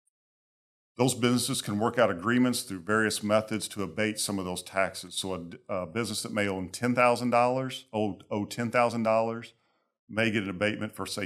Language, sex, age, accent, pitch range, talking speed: English, male, 40-59, American, 95-115 Hz, 170 wpm